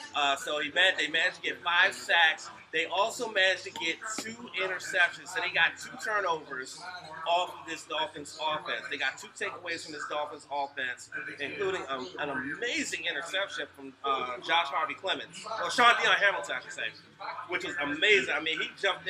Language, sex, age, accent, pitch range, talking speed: English, male, 30-49, American, 160-200 Hz, 185 wpm